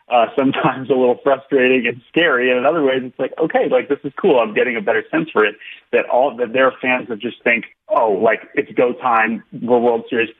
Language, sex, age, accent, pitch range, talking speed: English, male, 30-49, American, 115-155 Hz, 240 wpm